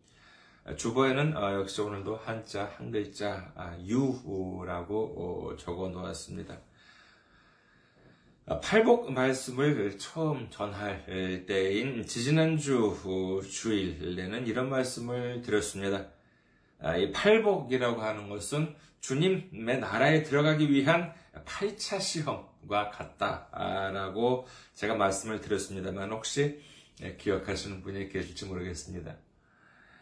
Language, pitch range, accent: Korean, 100-160 Hz, native